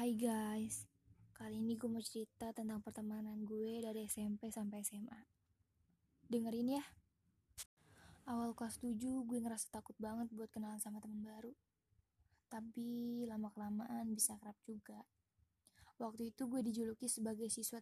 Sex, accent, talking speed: female, native, 130 wpm